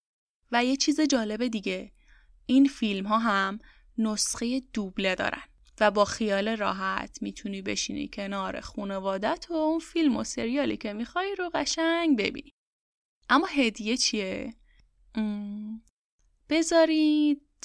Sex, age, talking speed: female, 10-29, 115 wpm